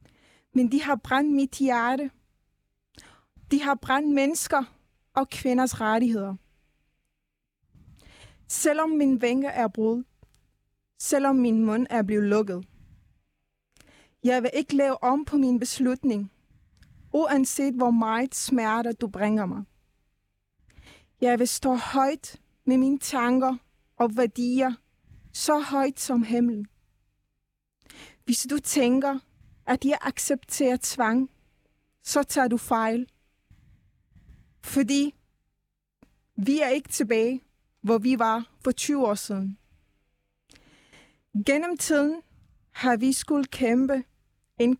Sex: female